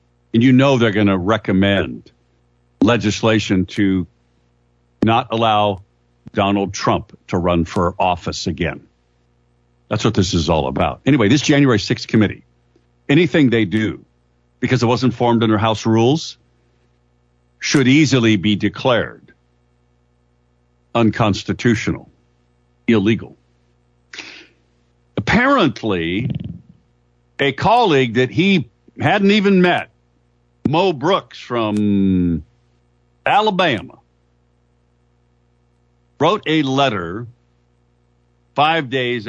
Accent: American